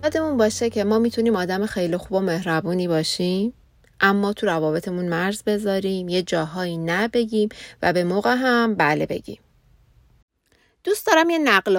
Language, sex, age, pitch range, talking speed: Persian, female, 30-49, 180-230 Hz, 150 wpm